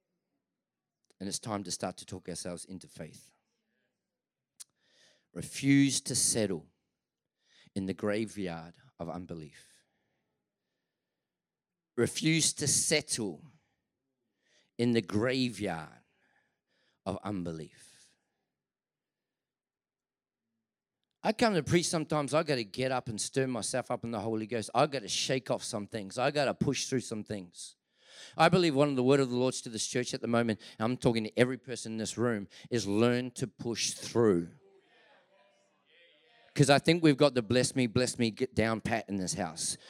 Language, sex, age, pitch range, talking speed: English, male, 40-59, 110-145 Hz, 155 wpm